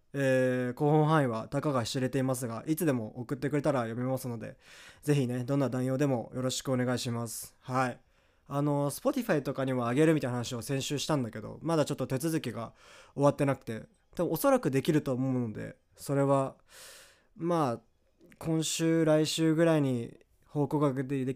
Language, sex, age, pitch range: Japanese, male, 20-39, 115-145 Hz